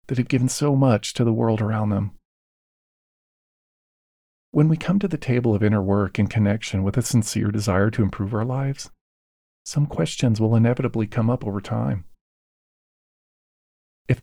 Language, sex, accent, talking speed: English, male, American, 160 wpm